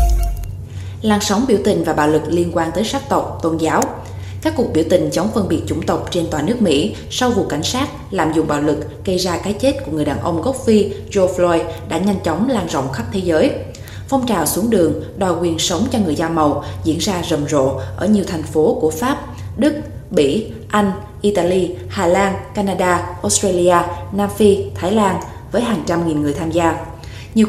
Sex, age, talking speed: female, 20-39, 210 wpm